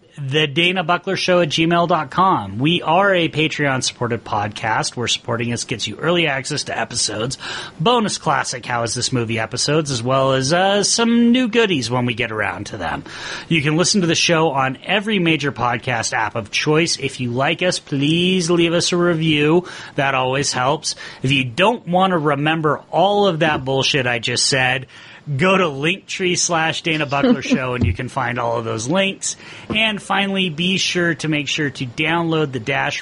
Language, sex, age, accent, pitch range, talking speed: English, male, 30-49, American, 125-170 Hz, 185 wpm